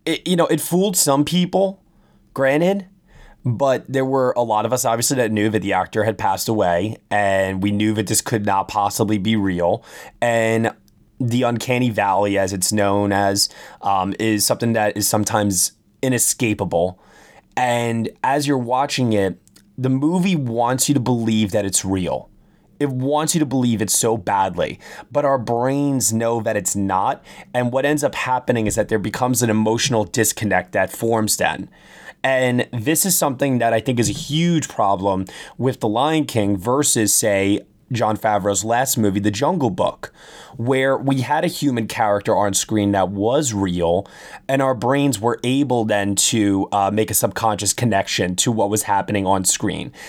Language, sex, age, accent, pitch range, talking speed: English, male, 20-39, American, 105-130 Hz, 175 wpm